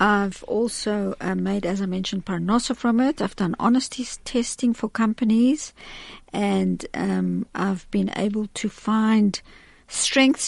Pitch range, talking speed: 185-225 Hz, 135 wpm